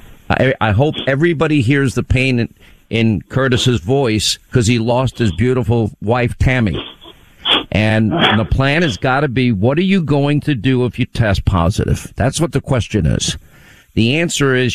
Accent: American